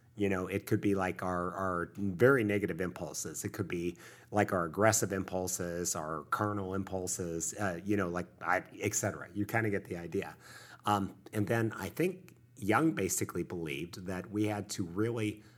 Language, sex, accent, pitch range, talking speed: English, male, American, 95-115 Hz, 175 wpm